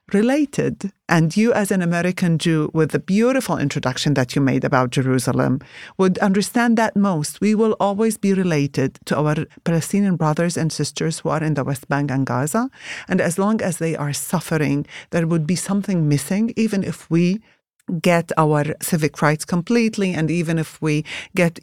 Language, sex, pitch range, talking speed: English, female, 150-200 Hz, 180 wpm